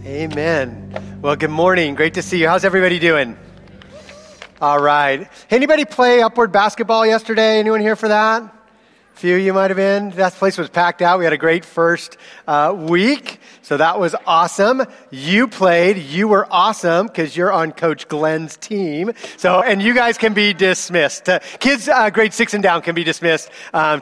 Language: English